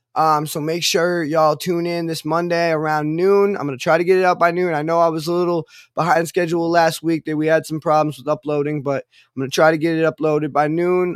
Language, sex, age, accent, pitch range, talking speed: English, male, 20-39, American, 150-170 Hz, 265 wpm